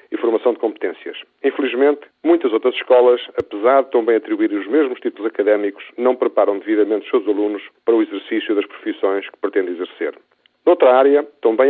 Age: 40-59